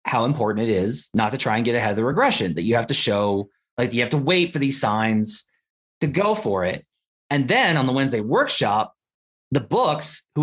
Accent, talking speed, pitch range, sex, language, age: American, 225 wpm, 125-170 Hz, male, English, 30-49